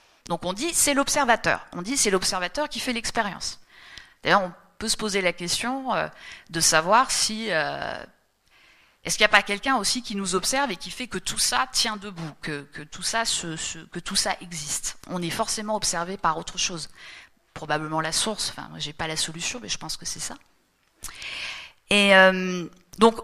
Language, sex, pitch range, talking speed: French, female, 175-250 Hz, 195 wpm